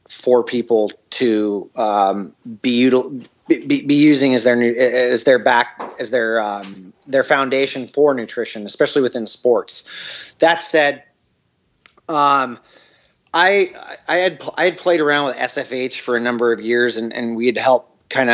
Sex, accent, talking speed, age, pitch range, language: male, American, 155 wpm, 30-49, 115-140 Hz, English